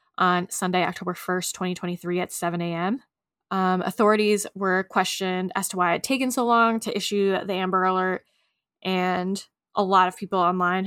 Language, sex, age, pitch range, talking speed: English, female, 10-29, 185-230 Hz, 170 wpm